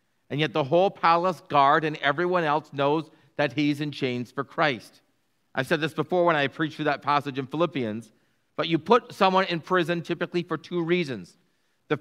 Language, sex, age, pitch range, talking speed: English, male, 40-59, 150-190 Hz, 200 wpm